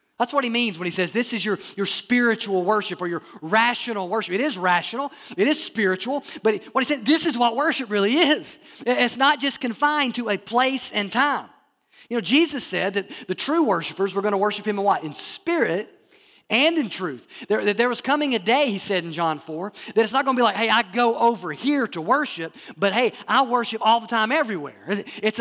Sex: male